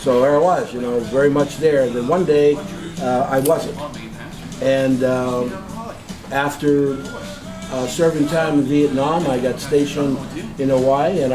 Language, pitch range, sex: English, 130-155 Hz, male